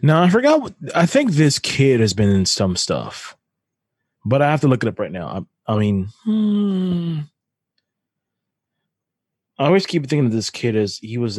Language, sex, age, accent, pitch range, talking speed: English, male, 20-39, American, 95-145 Hz, 190 wpm